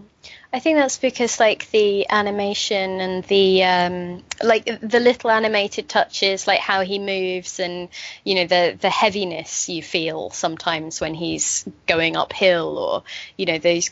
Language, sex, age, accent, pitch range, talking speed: English, female, 20-39, British, 170-195 Hz, 155 wpm